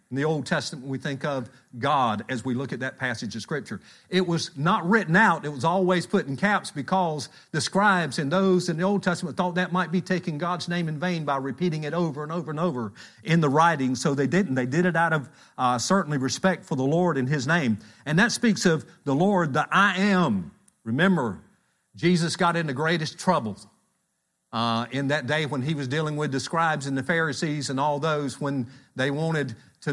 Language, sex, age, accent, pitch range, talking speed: English, male, 50-69, American, 120-165 Hz, 220 wpm